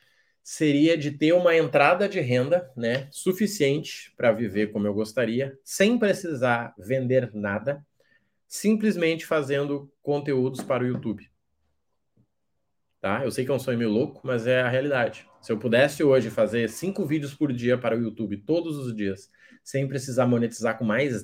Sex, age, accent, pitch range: male, 20-39, Brazilian, 110-140 Hz